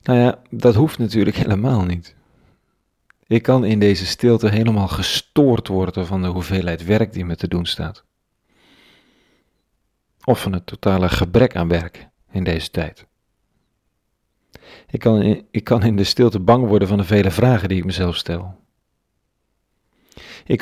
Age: 40-59